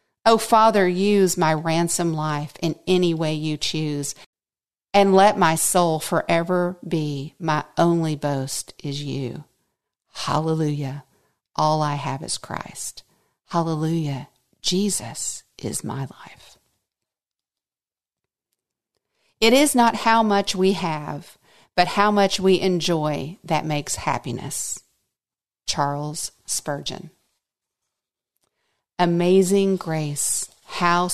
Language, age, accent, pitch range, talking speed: English, 50-69, American, 150-180 Hz, 100 wpm